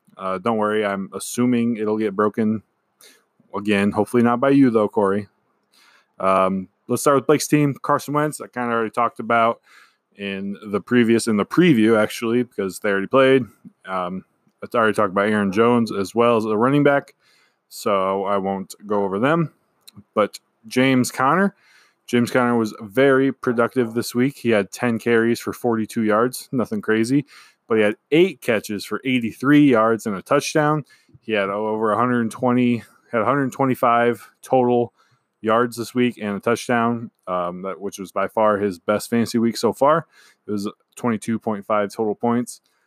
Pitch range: 100-125 Hz